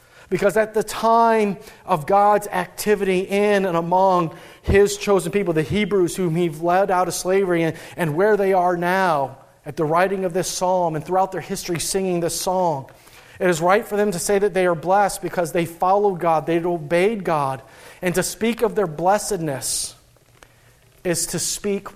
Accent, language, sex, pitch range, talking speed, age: American, English, male, 165-200 Hz, 185 wpm, 40-59